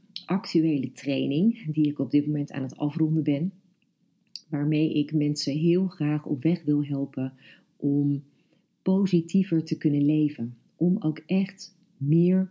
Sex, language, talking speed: female, Dutch, 140 wpm